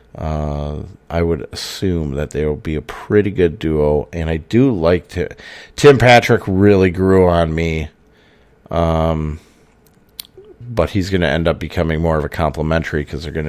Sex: male